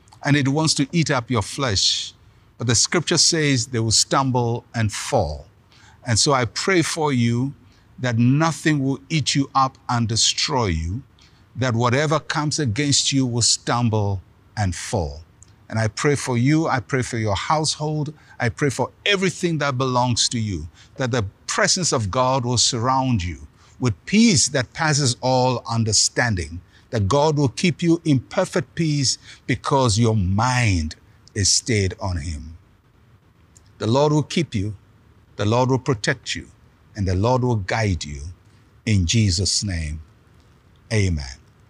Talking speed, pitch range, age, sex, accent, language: 155 wpm, 100-135 Hz, 50-69, male, Nigerian, English